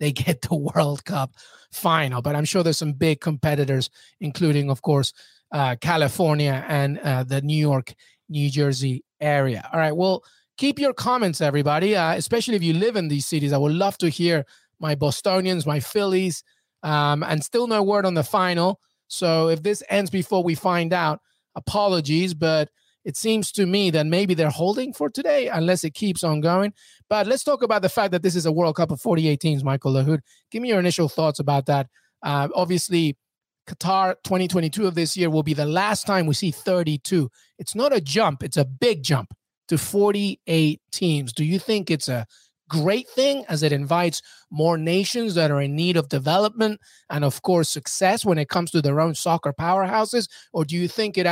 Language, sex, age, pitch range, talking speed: English, male, 30-49, 150-190 Hz, 195 wpm